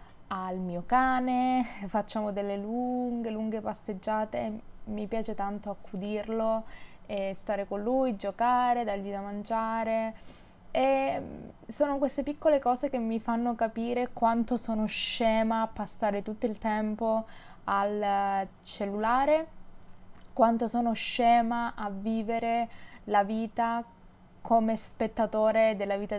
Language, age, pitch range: Italian, 20-39, 205-240 Hz